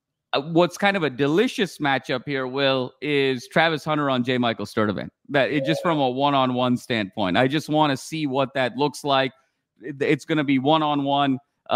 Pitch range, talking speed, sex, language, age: 135-155 Hz, 175 wpm, male, English, 30-49